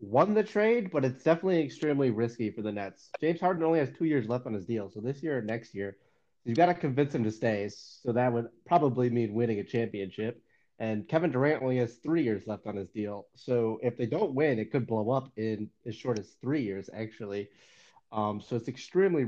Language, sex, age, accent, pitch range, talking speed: English, male, 30-49, American, 110-145 Hz, 225 wpm